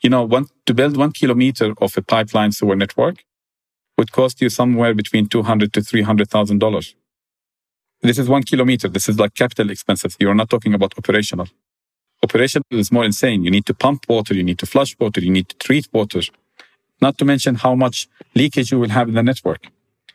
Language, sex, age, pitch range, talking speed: English, male, 50-69, 105-125 Hz, 195 wpm